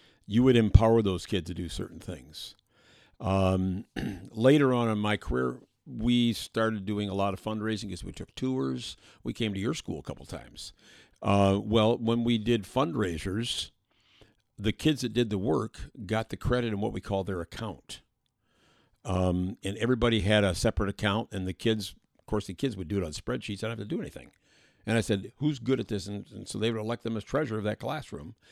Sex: male